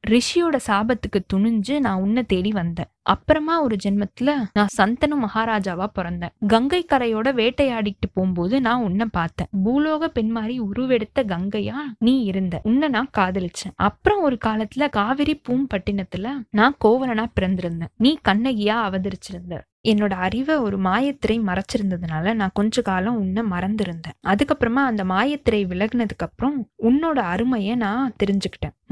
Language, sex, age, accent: Tamil, female, 20-39, native